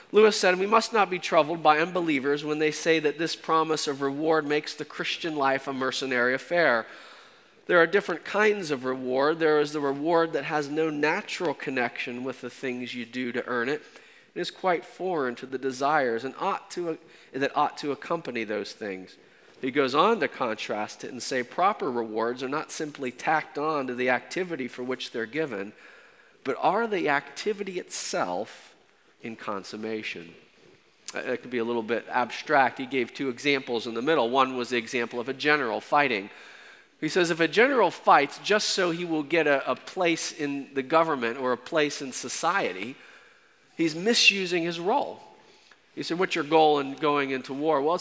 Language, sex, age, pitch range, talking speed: English, male, 40-59, 130-170 Hz, 185 wpm